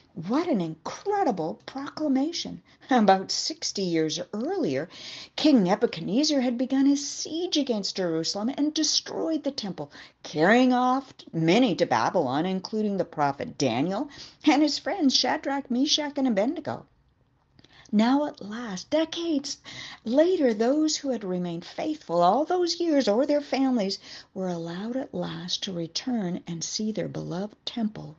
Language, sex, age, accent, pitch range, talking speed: English, female, 50-69, American, 175-280 Hz, 135 wpm